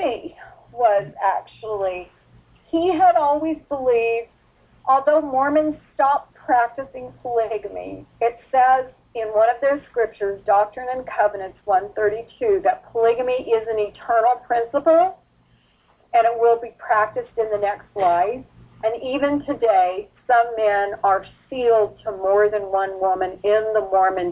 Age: 40-59